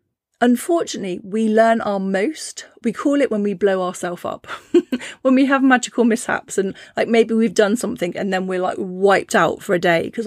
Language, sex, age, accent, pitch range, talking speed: English, female, 30-49, British, 200-245 Hz, 200 wpm